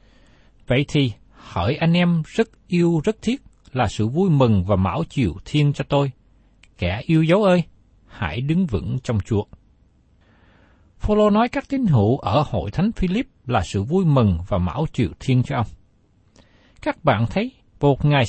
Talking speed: 170 wpm